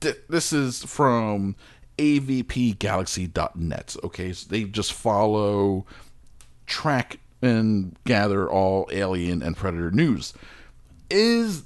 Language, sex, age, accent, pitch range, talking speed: English, male, 40-59, American, 95-150 Hz, 95 wpm